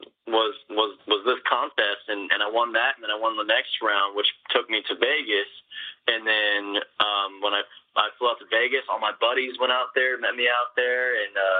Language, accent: English, American